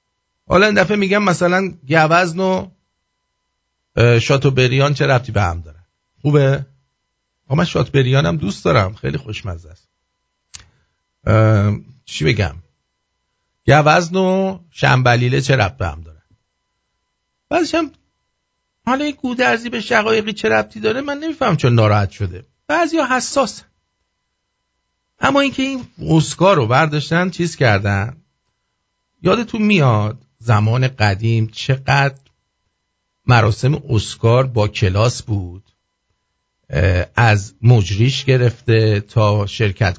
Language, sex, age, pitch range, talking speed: English, male, 50-69, 105-170 Hz, 110 wpm